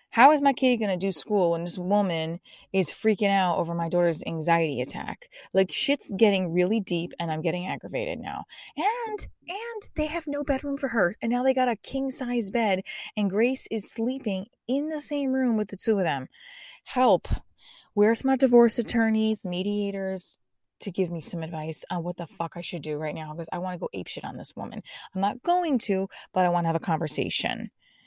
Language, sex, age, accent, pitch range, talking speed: English, female, 20-39, American, 175-235 Hz, 210 wpm